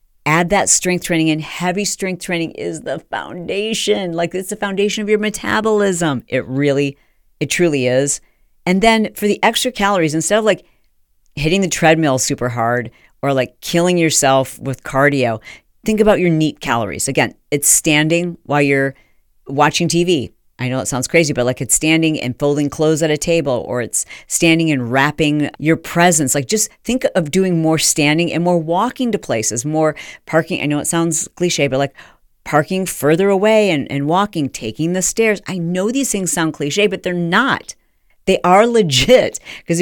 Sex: female